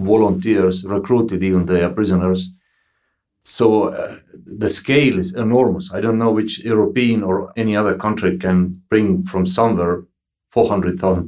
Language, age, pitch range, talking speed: English, 50-69, 95-120 Hz, 135 wpm